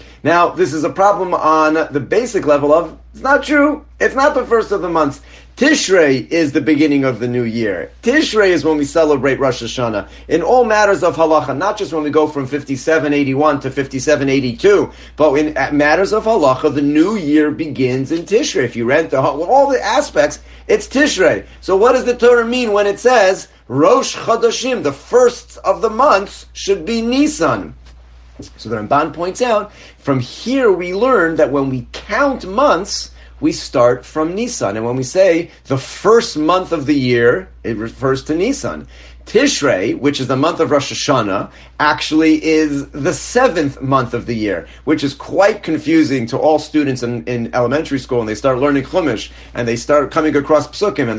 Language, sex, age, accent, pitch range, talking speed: English, male, 40-59, American, 135-195 Hz, 185 wpm